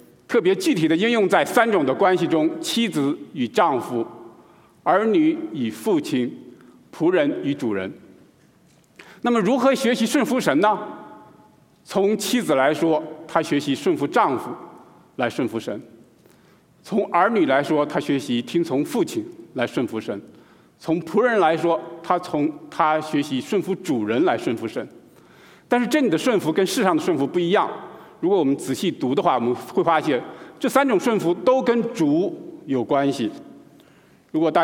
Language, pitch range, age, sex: Chinese, 155-245 Hz, 50-69, male